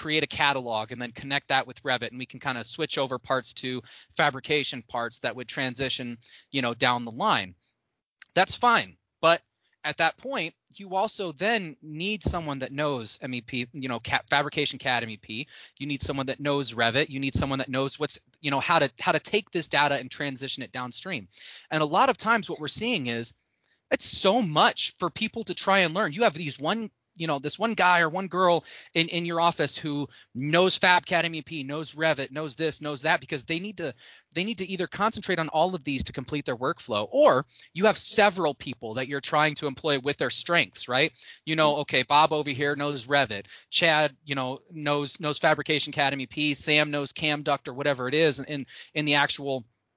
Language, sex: English, male